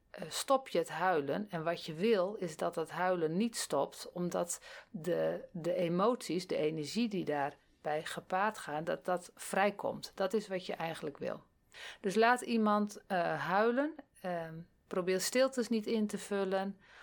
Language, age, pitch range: Dutch, 40-59, 165-215 Hz